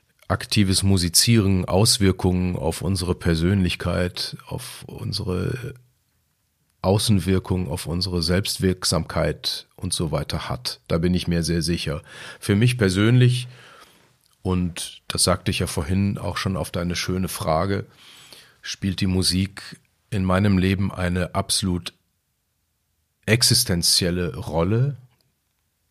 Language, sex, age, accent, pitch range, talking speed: German, male, 40-59, German, 90-120 Hz, 110 wpm